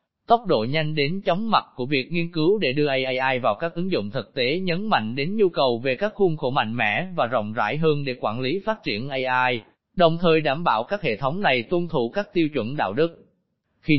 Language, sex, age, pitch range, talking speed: Vietnamese, male, 20-39, 130-175 Hz, 240 wpm